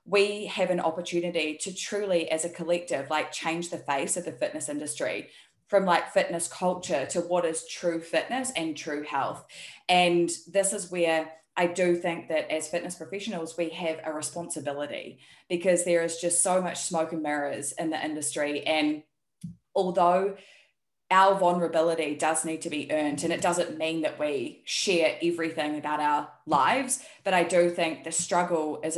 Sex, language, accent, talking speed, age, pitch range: female, English, Australian, 170 wpm, 20-39, 155-180 Hz